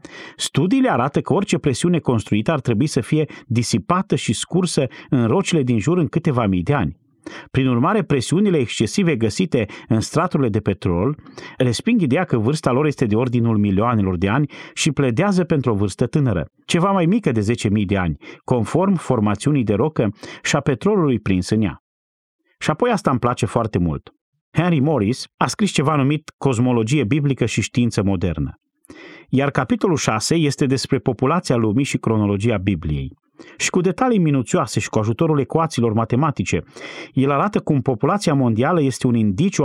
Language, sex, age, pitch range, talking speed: Romanian, male, 30-49, 115-155 Hz, 165 wpm